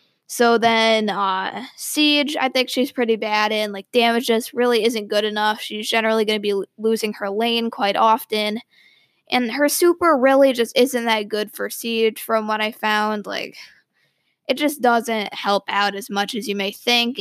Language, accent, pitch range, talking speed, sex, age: English, American, 210-245 Hz, 190 wpm, female, 20-39